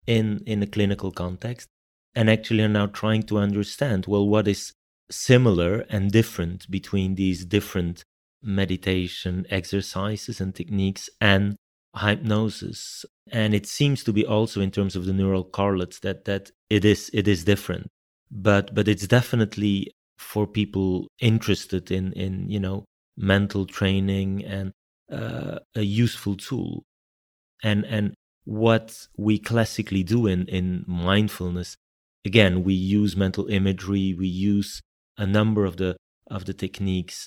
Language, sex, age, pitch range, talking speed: English, male, 30-49, 95-110 Hz, 140 wpm